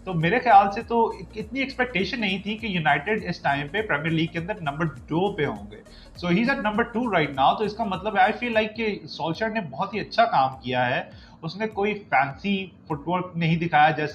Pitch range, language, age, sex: 150-205 Hz, Urdu, 30-49, male